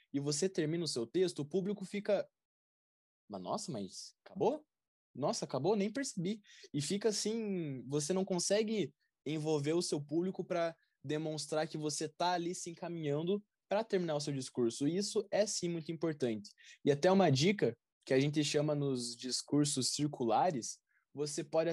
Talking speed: 165 wpm